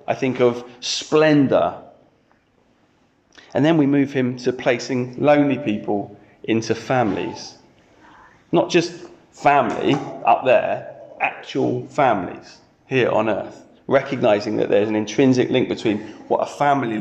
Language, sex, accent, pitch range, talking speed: English, male, British, 120-145 Hz, 125 wpm